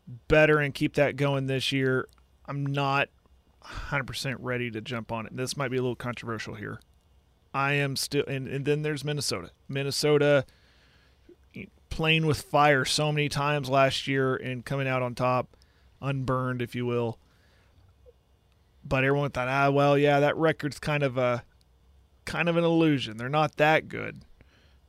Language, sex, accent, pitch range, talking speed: English, male, American, 120-145 Hz, 160 wpm